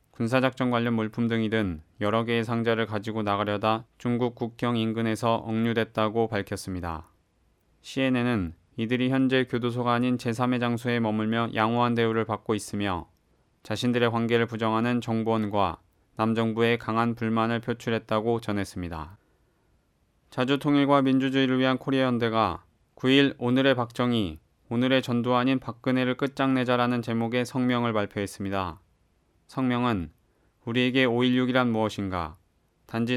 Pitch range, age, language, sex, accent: 110-125 Hz, 20-39, Korean, male, native